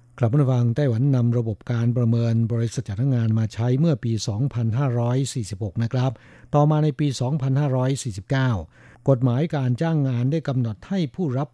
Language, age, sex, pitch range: Thai, 60-79, male, 115-140 Hz